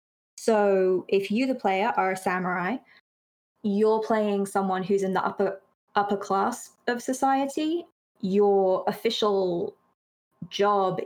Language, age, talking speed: English, 20-39, 120 wpm